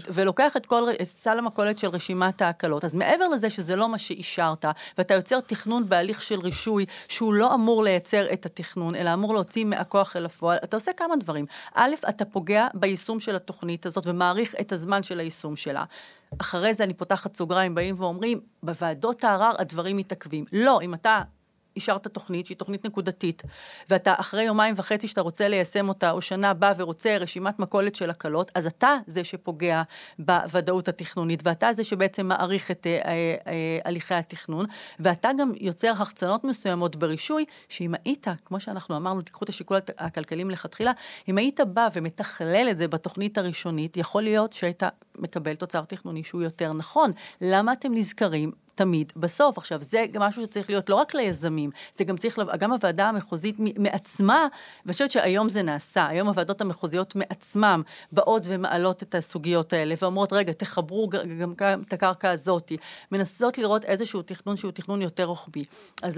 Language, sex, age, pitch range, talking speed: Hebrew, female, 30-49, 175-210 Hz, 170 wpm